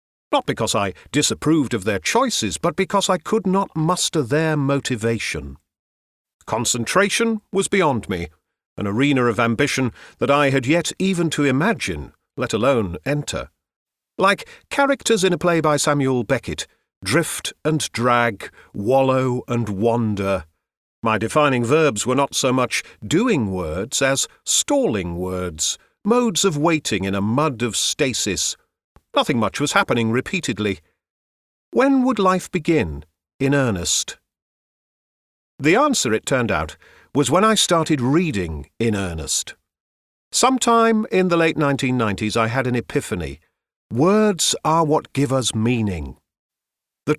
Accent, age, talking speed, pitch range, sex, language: British, 50-69, 135 wpm, 105-165 Hz, male, English